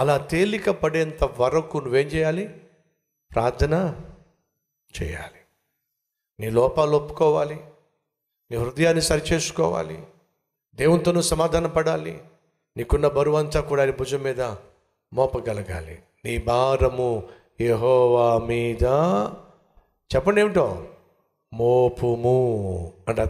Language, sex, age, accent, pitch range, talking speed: Telugu, male, 60-79, native, 125-185 Hz, 80 wpm